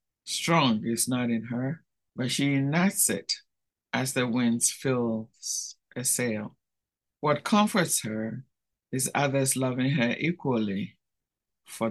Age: 60-79